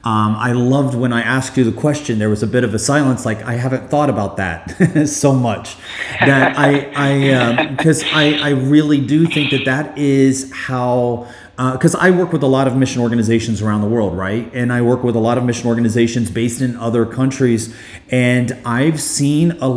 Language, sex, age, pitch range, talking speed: English, male, 30-49, 120-140 Hz, 210 wpm